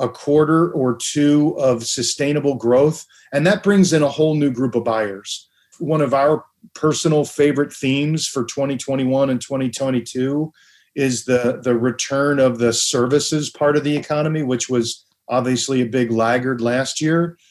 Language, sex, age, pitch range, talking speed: English, male, 40-59, 120-145 Hz, 160 wpm